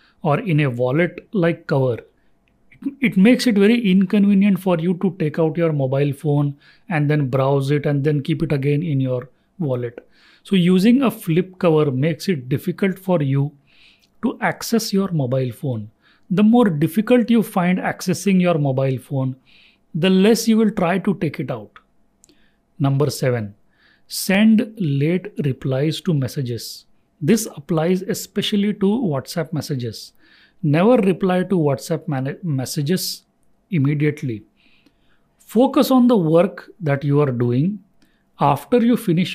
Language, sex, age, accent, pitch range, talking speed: English, male, 40-59, Indian, 140-195 Hz, 145 wpm